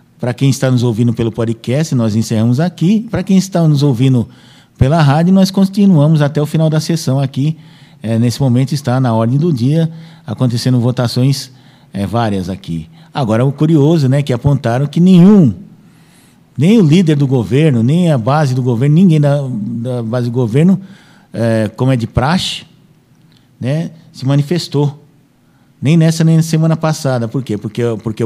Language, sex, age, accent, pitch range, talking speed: Portuguese, male, 50-69, Brazilian, 115-150 Hz, 170 wpm